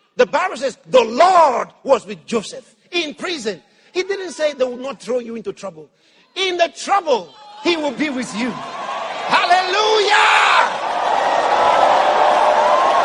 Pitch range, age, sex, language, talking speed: 245-350 Hz, 50-69, male, English, 135 wpm